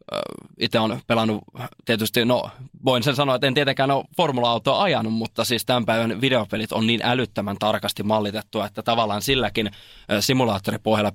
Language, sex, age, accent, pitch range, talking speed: Finnish, male, 20-39, native, 110-125 Hz, 150 wpm